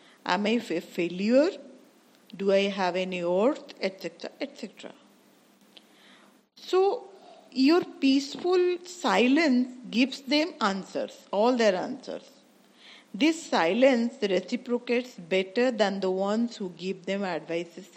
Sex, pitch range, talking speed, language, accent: female, 190-260 Hz, 105 wpm, Hindi, native